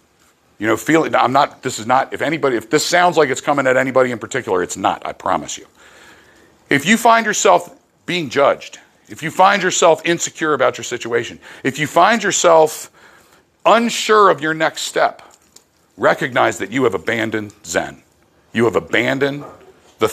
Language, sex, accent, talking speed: English, male, American, 175 wpm